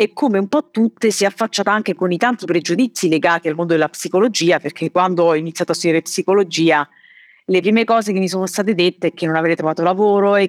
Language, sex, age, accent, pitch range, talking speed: Italian, female, 30-49, native, 160-185 Hz, 230 wpm